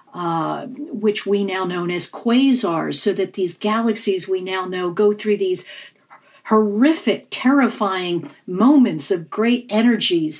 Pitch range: 185-235 Hz